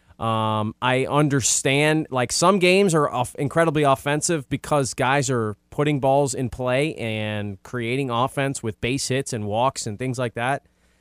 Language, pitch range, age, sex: English, 115-145 Hz, 20-39, male